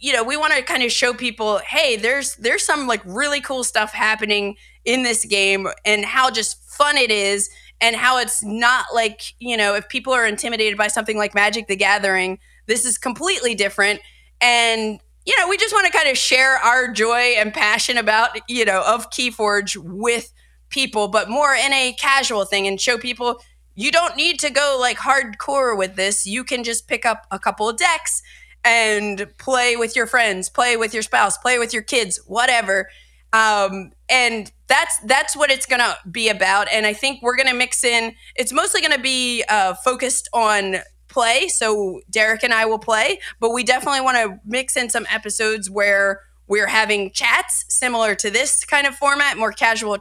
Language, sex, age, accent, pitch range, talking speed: English, female, 20-39, American, 210-255 Hz, 190 wpm